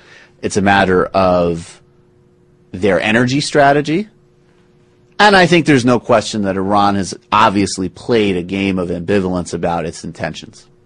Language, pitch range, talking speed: English, 90-125 Hz, 140 wpm